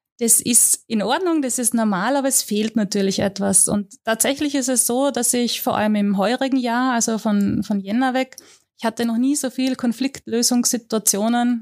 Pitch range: 210-245 Hz